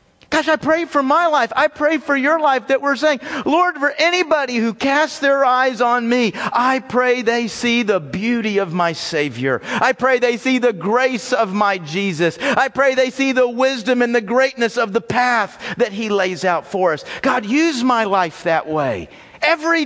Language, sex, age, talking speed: English, male, 50-69, 200 wpm